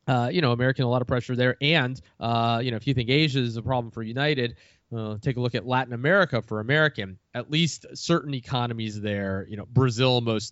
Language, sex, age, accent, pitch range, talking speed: English, male, 20-39, American, 105-130 Hz, 230 wpm